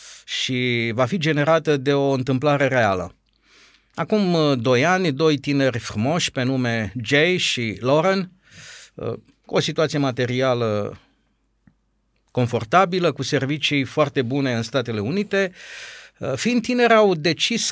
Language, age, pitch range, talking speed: Romanian, 50-69, 125-175 Hz, 120 wpm